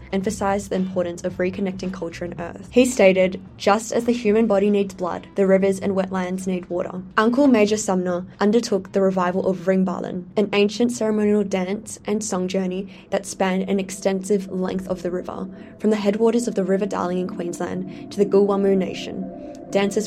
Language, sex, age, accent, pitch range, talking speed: English, female, 10-29, Australian, 180-205 Hz, 180 wpm